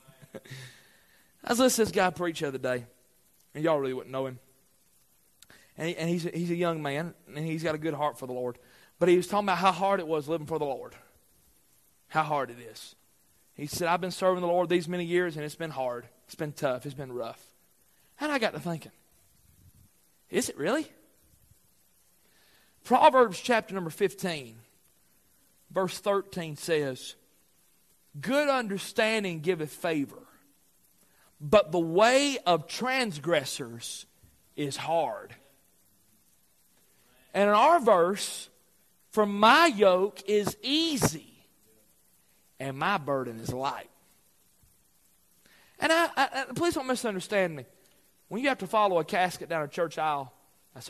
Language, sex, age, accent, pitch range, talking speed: English, male, 40-59, American, 135-195 Hz, 150 wpm